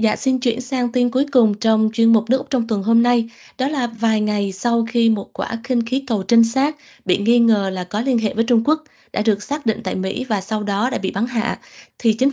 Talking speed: 265 wpm